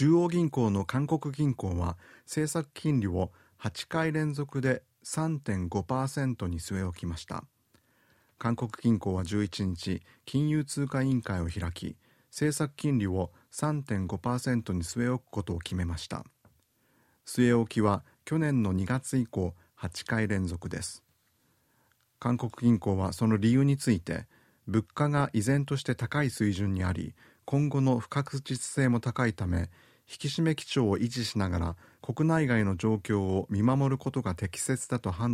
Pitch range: 95-135 Hz